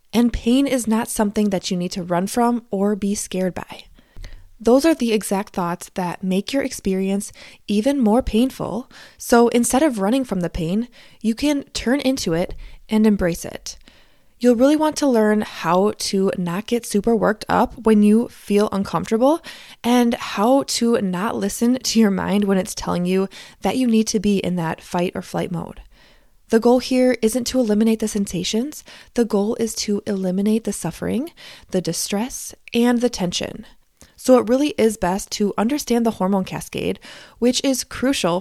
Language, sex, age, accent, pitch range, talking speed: English, female, 20-39, American, 180-240 Hz, 180 wpm